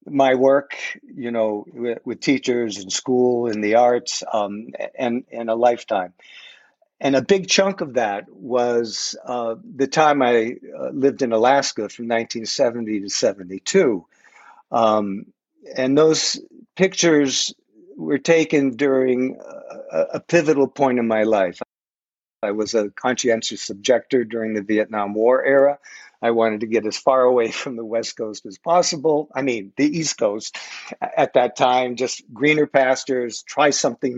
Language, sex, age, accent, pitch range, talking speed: English, male, 60-79, American, 115-140 Hz, 150 wpm